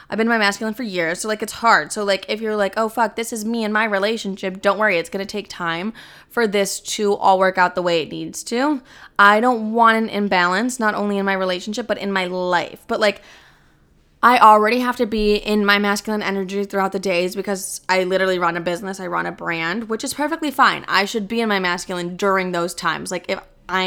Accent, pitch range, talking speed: American, 180-220 Hz, 240 wpm